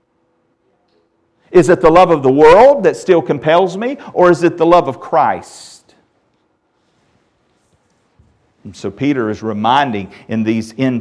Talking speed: 135 wpm